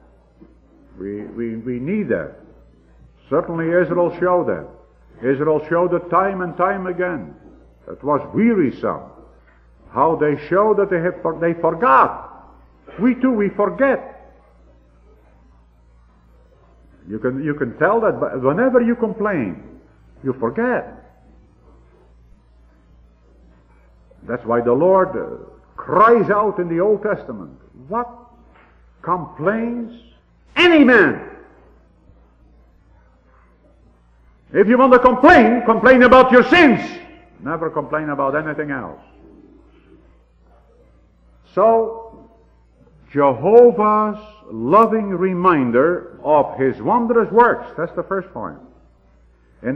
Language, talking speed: English, 100 wpm